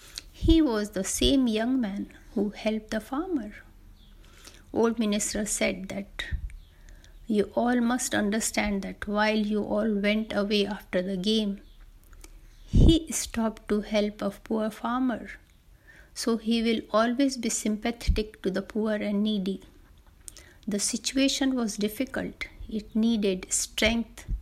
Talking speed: 130 wpm